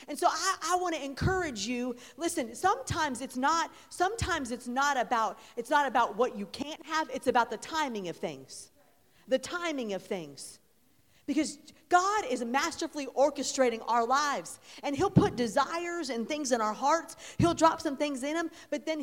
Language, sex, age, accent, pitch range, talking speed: English, female, 40-59, American, 230-315 Hz, 175 wpm